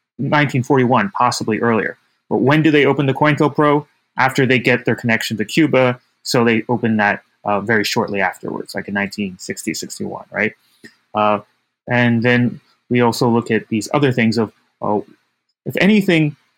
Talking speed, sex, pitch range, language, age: 165 wpm, male, 110-140 Hz, English, 30-49